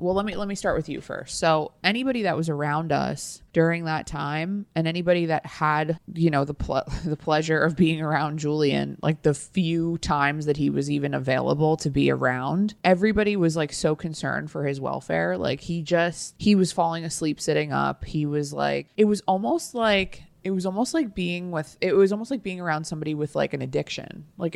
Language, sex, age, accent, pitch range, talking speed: English, female, 20-39, American, 150-185 Hz, 210 wpm